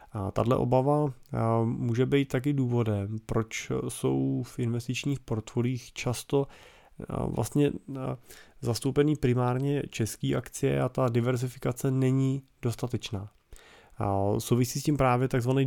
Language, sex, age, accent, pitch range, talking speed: Czech, male, 30-49, native, 110-135 Hz, 110 wpm